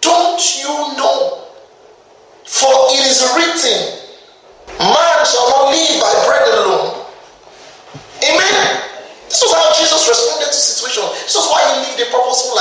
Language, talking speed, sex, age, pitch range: English, 140 wpm, male, 30-49, 225-365 Hz